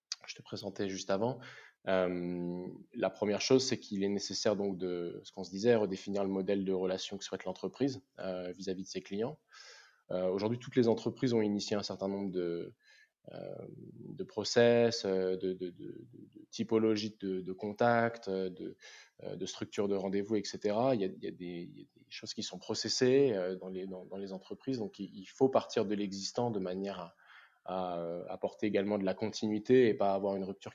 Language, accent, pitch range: French, French, 95-105 Hz